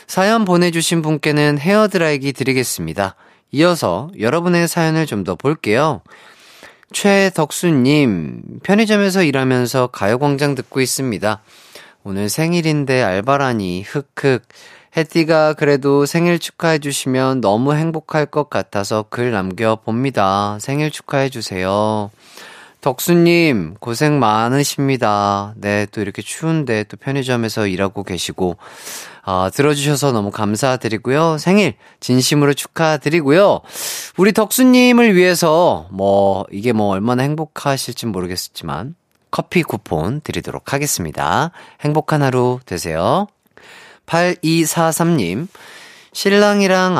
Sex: male